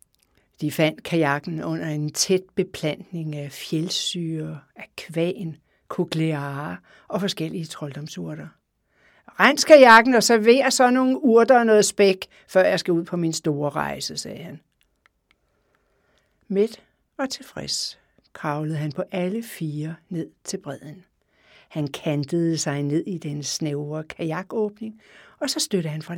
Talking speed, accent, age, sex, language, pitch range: 135 wpm, native, 60-79, female, Danish, 155-235 Hz